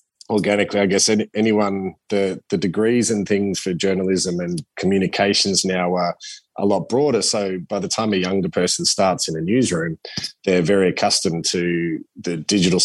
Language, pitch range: English, 90-110 Hz